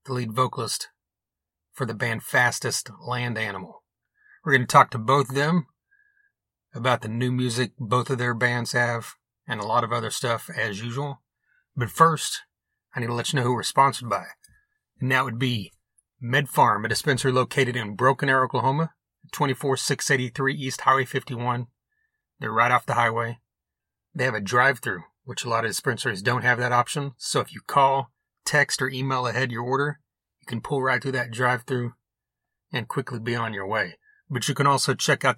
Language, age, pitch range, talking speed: English, 30-49, 120-140 Hz, 190 wpm